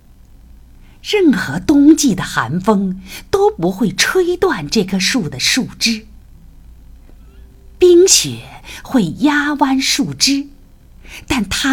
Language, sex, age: Chinese, female, 50-69